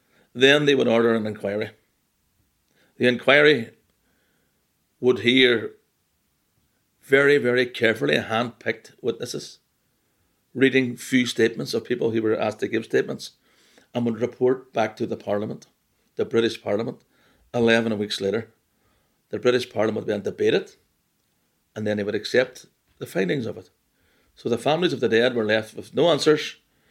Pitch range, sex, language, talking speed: 110-130 Hz, male, English, 145 wpm